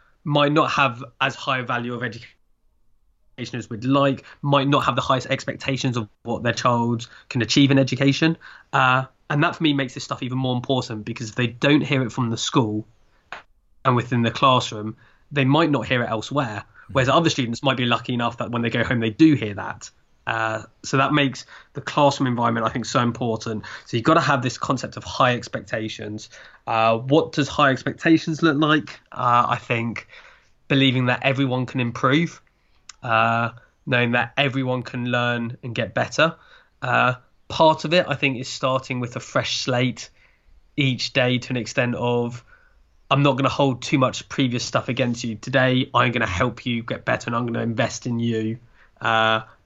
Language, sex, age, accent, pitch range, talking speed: English, male, 20-39, British, 115-135 Hz, 190 wpm